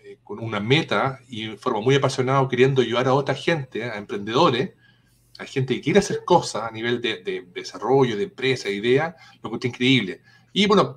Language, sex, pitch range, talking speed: Spanish, male, 125-155 Hz, 195 wpm